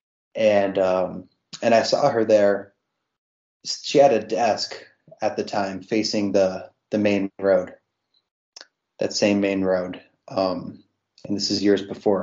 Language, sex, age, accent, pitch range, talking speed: English, male, 20-39, American, 95-105 Hz, 140 wpm